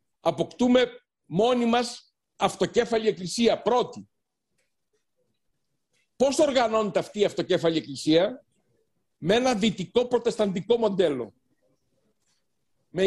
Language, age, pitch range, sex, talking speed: Greek, 60-79, 175-225 Hz, male, 85 wpm